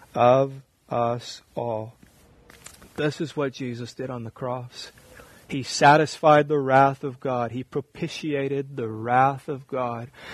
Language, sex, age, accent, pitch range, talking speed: English, male, 30-49, American, 130-145 Hz, 135 wpm